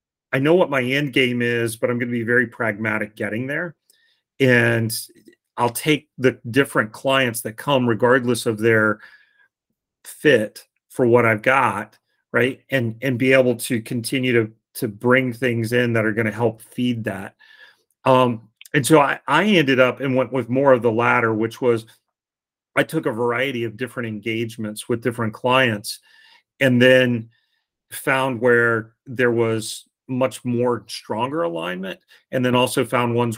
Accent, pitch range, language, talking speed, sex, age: American, 110-130 Hz, English, 160 wpm, male, 40-59